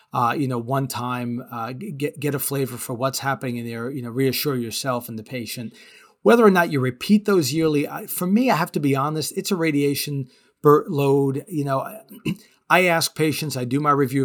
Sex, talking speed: male, 215 wpm